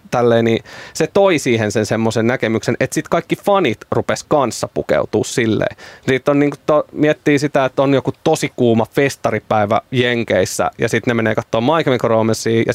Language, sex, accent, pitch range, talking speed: Finnish, male, native, 115-135 Hz, 170 wpm